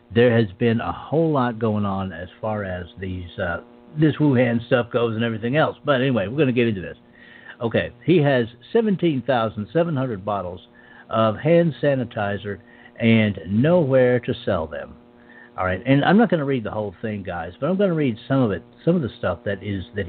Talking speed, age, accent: 205 wpm, 60-79, American